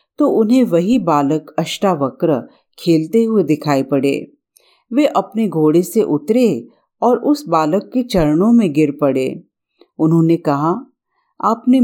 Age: 50-69